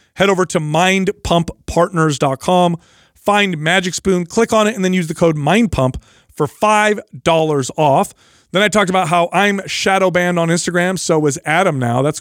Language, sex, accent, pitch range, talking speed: English, male, American, 150-185 Hz, 175 wpm